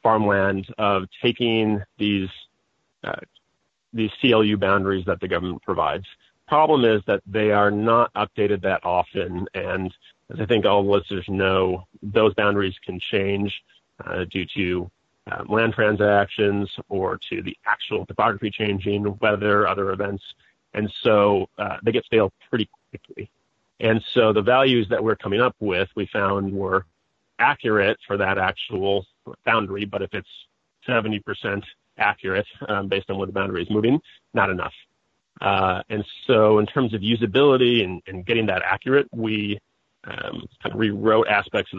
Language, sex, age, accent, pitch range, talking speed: English, male, 40-59, American, 95-110 Hz, 155 wpm